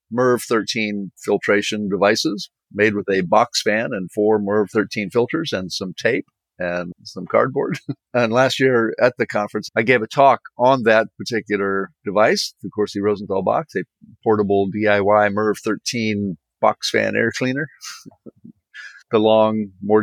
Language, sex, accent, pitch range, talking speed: English, male, American, 105-125 Hz, 145 wpm